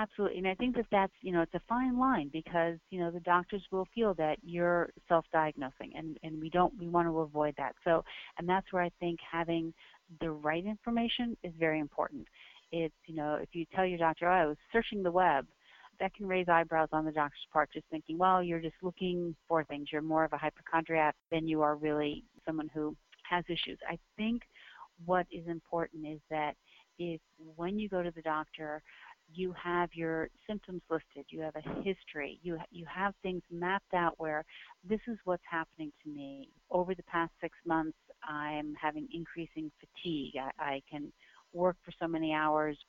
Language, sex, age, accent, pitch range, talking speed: English, female, 40-59, American, 155-185 Hz, 195 wpm